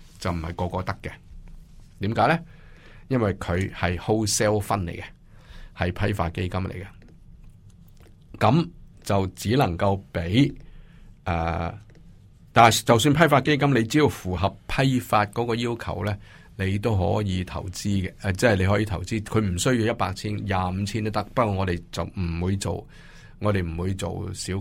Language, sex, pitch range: Chinese, male, 90-110 Hz